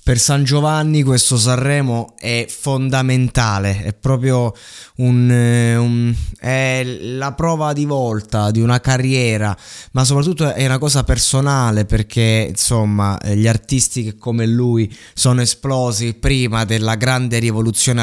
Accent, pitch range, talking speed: native, 105-125 Hz, 125 wpm